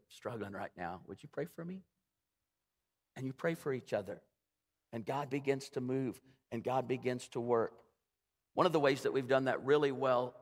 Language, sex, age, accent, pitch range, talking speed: English, male, 50-69, American, 130-150 Hz, 195 wpm